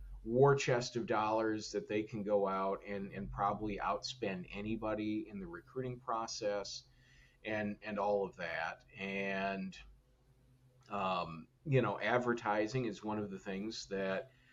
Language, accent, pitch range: English, American, 100-125 Hz